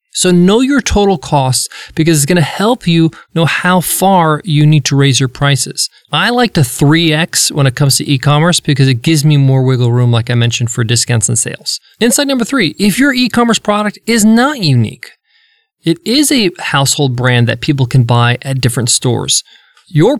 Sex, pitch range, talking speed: male, 130-185 Hz, 195 wpm